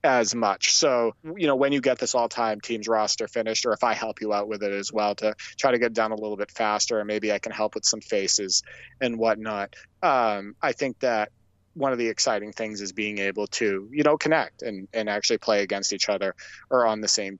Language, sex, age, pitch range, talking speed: English, male, 30-49, 105-135 Hz, 240 wpm